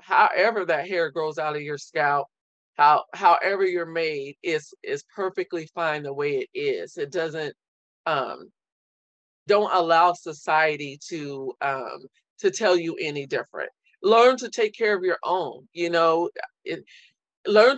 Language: English